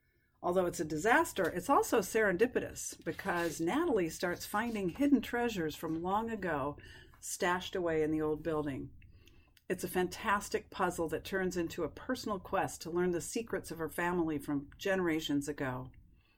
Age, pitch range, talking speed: 50-69, 150-190 Hz, 155 wpm